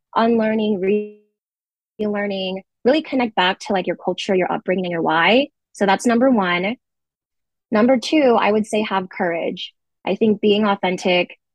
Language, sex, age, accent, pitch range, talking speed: English, female, 20-39, American, 185-235 Hz, 150 wpm